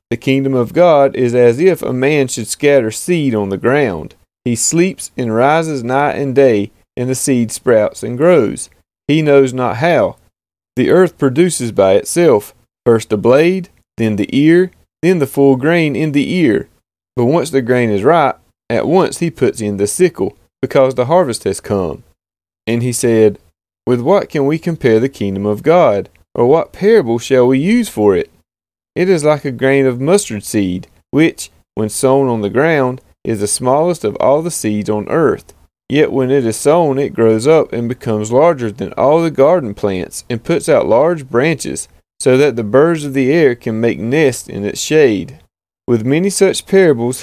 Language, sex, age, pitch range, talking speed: English, male, 30-49, 110-155 Hz, 190 wpm